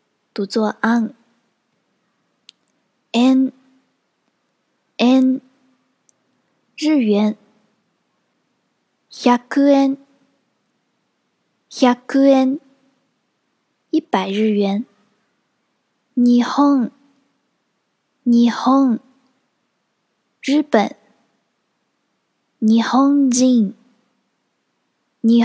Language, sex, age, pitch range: Chinese, female, 10-29, 230-265 Hz